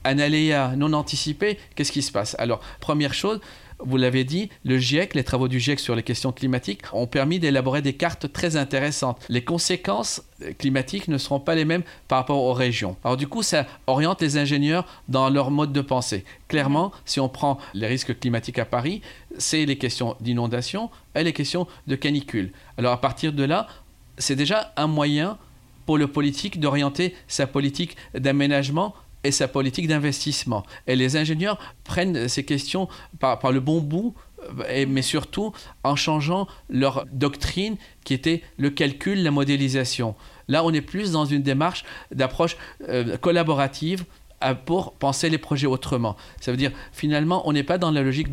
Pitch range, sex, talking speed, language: 130-160 Hz, male, 180 wpm, French